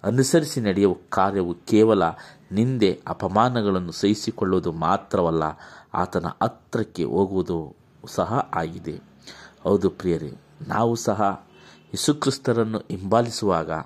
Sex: male